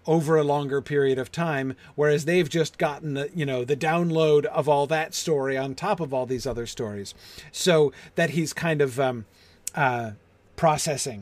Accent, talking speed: American, 180 wpm